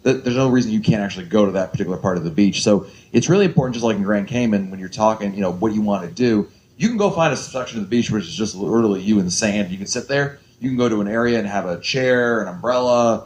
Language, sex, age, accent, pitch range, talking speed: English, male, 30-49, American, 100-125 Hz, 300 wpm